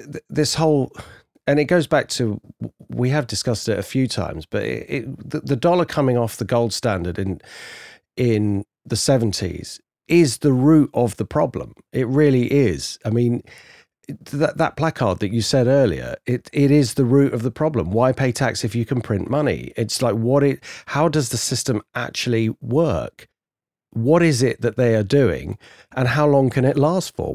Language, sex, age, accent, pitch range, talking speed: English, male, 40-59, British, 110-150 Hz, 190 wpm